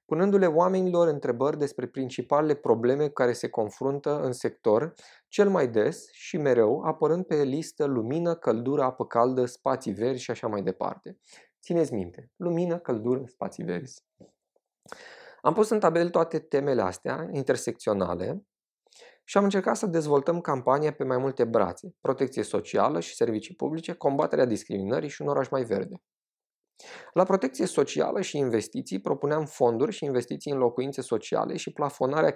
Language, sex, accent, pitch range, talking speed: Romanian, male, native, 125-165 Hz, 145 wpm